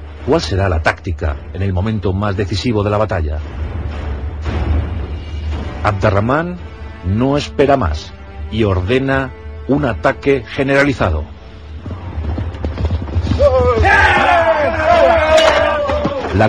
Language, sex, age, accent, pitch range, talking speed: Spanish, male, 40-59, Spanish, 85-140 Hz, 80 wpm